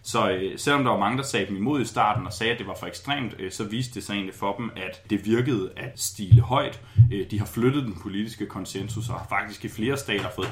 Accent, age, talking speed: native, 30-49, 250 wpm